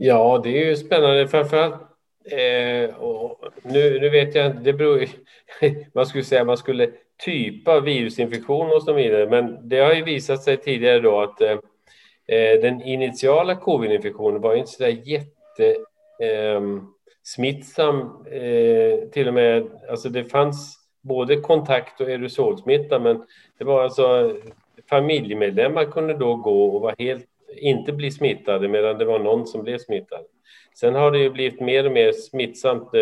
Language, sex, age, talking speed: Swedish, male, 40-59, 155 wpm